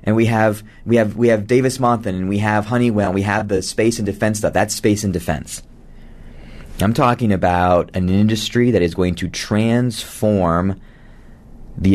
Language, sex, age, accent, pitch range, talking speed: English, male, 30-49, American, 90-105 Hz, 180 wpm